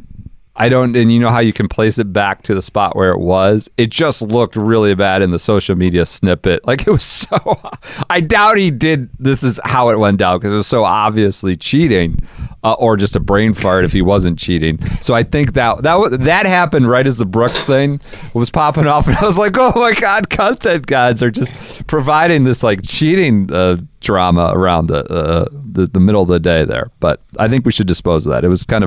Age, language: 40-59, English